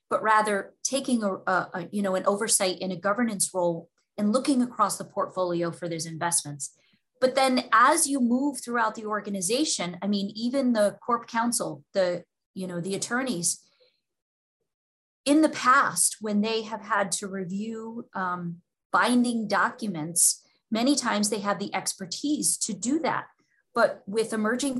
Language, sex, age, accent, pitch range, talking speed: English, female, 30-49, American, 185-230 Hz, 155 wpm